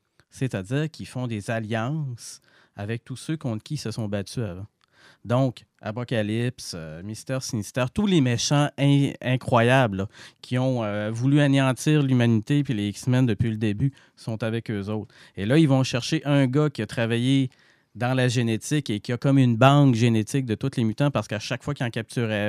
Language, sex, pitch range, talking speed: French, male, 110-140 Hz, 195 wpm